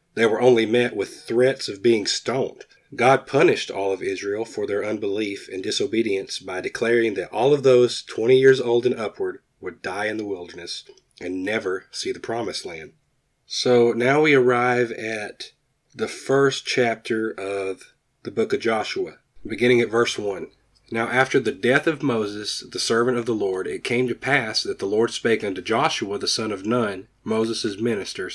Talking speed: 180 wpm